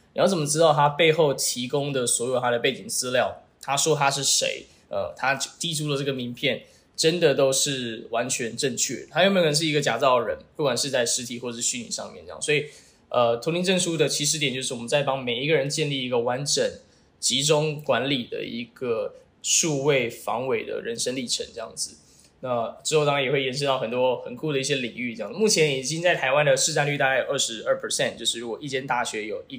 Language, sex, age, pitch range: Chinese, male, 10-29, 130-165 Hz